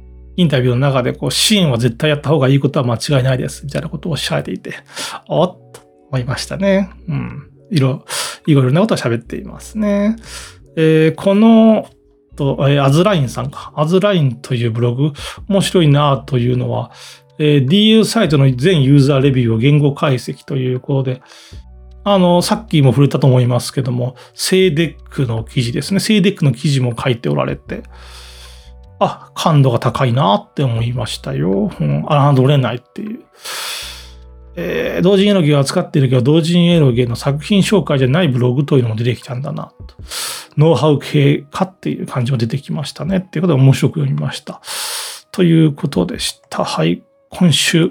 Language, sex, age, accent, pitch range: Japanese, male, 40-59, native, 125-170 Hz